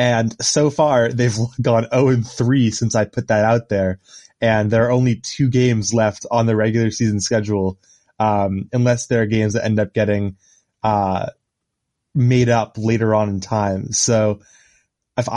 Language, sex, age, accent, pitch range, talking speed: English, male, 20-39, American, 110-125 Hz, 165 wpm